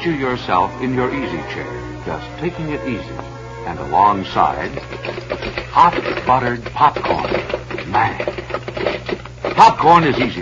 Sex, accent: male, American